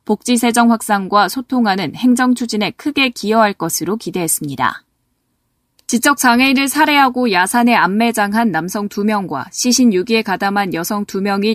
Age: 20-39